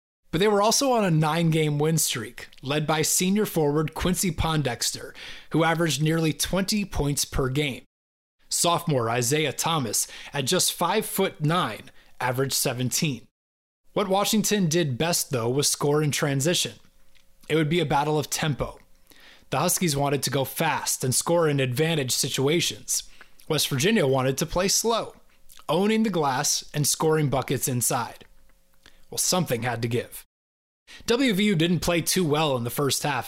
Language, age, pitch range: English, 20-39, 130-175 Hz